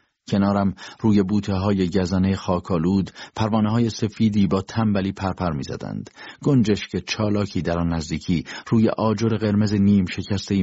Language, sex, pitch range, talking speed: Persian, male, 95-115 Hz, 130 wpm